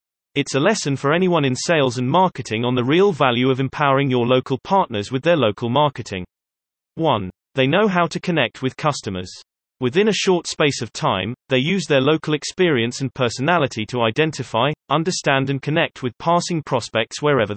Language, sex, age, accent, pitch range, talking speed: English, male, 30-49, British, 115-155 Hz, 180 wpm